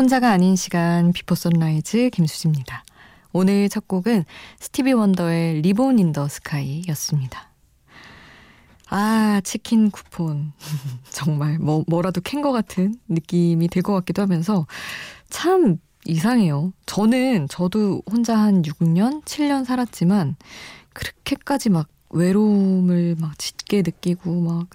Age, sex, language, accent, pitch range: 20-39, female, Korean, native, 160-220 Hz